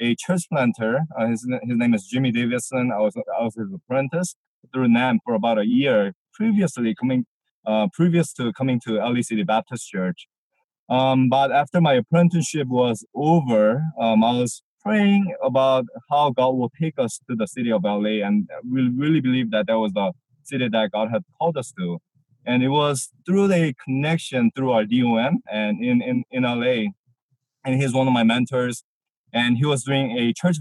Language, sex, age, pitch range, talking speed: English, male, 20-39, 120-155 Hz, 190 wpm